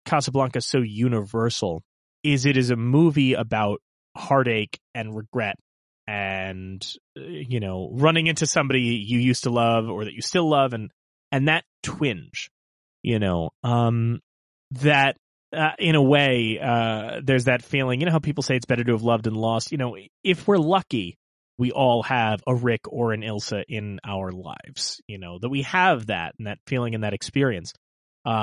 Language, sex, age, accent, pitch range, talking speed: English, male, 30-49, American, 105-140 Hz, 175 wpm